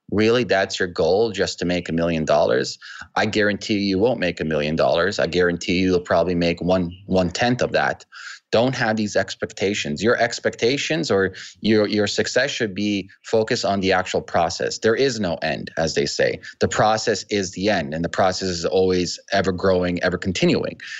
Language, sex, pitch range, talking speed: English, male, 95-120 Hz, 185 wpm